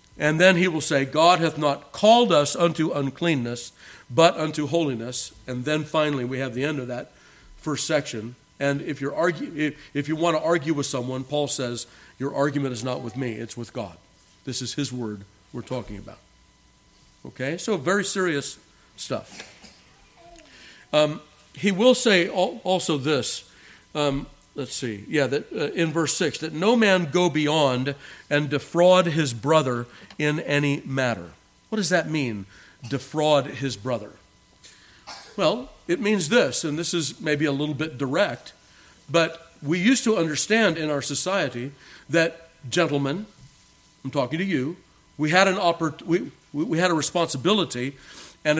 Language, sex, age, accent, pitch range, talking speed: English, male, 50-69, American, 130-170 Hz, 160 wpm